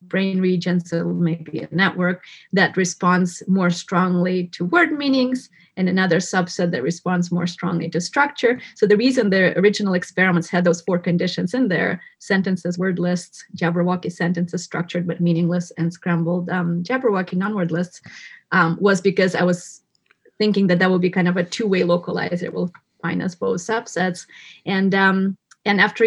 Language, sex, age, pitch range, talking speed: English, female, 30-49, 175-205 Hz, 170 wpm